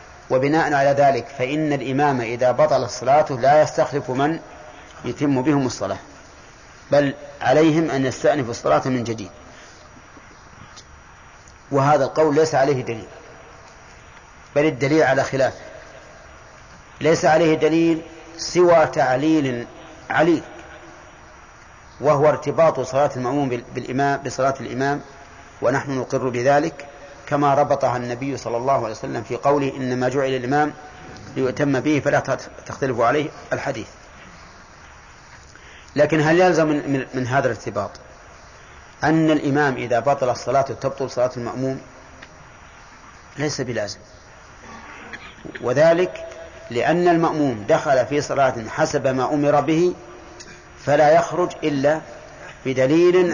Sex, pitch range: male, 125-150 Hz